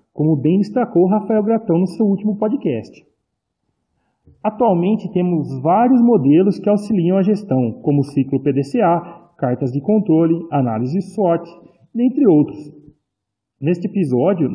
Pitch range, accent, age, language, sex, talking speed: 145-205 Hz, Brazilian, 40-59, Portuguese, male, 120 wpm